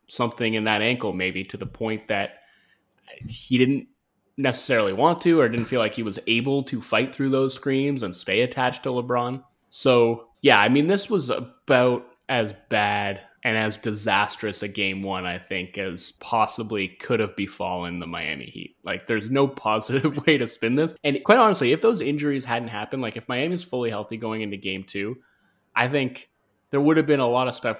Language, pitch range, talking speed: English, 105-130 Hz, 200 wpm